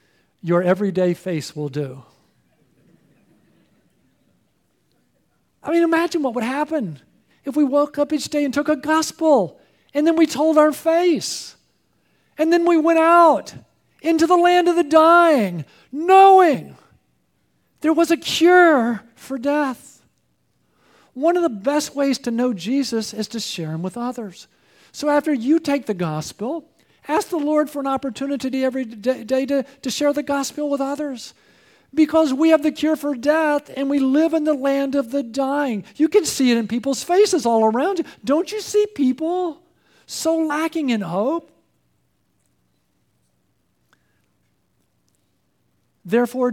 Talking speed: 150 wpm